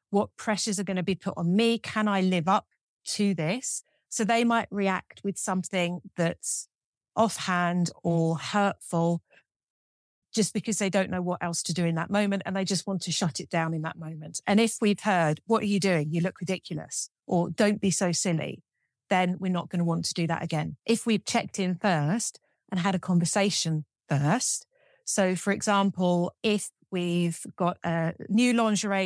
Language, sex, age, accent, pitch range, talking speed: English, female, 40-59, British, 170-205 Hz, 190 wpm